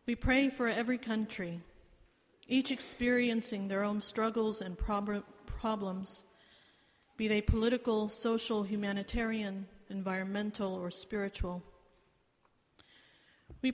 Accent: American